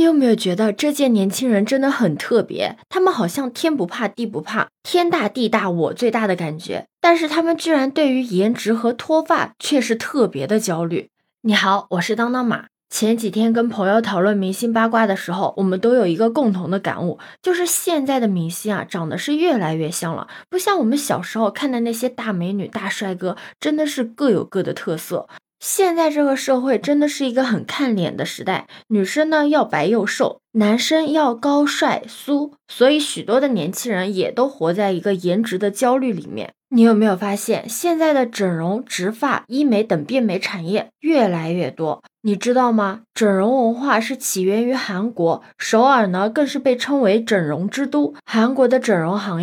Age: 20-39